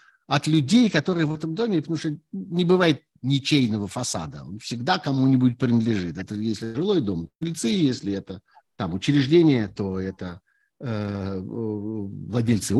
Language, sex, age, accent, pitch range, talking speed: Russian, male, 50-69, native, 100-155 Hz, 130 wpm